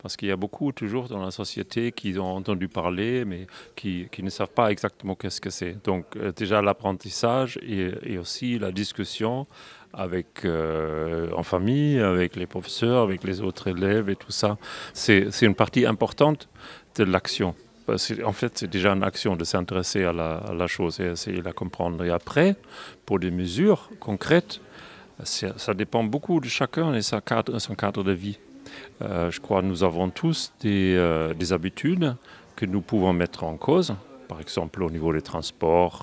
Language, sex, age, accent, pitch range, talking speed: French, male, 40-59, French, 90-105 Hz, 185 wpm